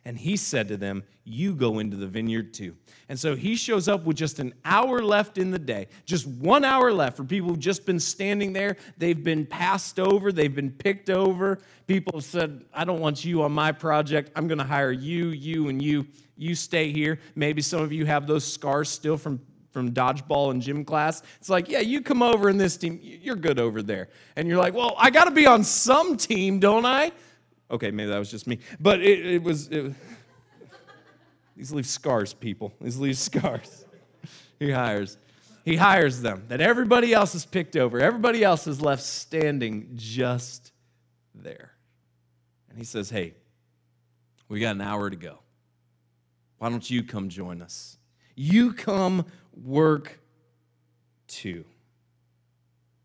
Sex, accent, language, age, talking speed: male, American, English, 30-49, 180 wpm